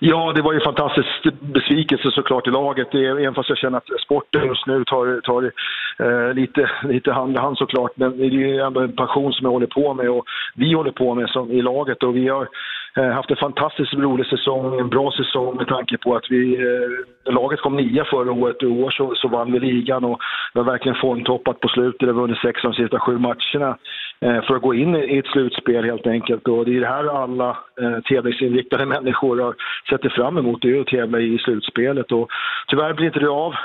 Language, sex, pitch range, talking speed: Swedish, male, 125-135 Hz, 230 wpm